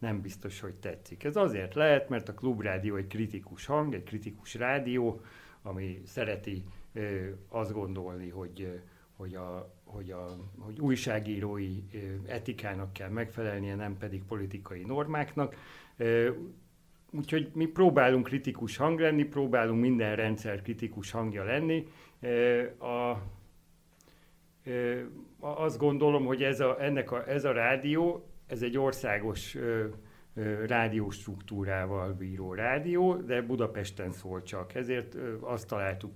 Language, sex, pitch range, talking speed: Hungarian, male, 100-125 Hz, 105 wpm